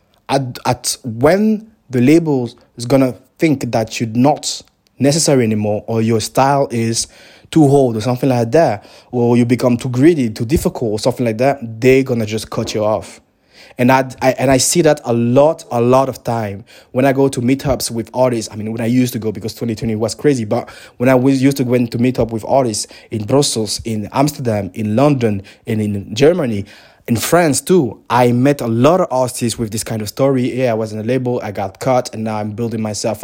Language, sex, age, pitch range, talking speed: English, male, 20-39, 110-130 Hz, 215 wpm